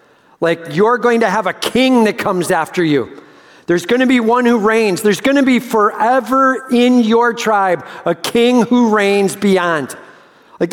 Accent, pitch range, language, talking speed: American, 155-220 Hz, English, 180 wpm